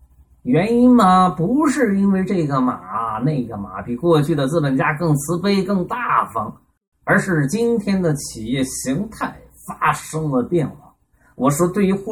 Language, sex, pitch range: Chinese, male, 130-180 Hz